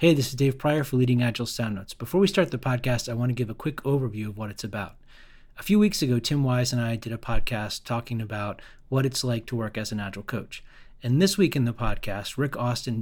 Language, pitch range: English, 115-140 Hz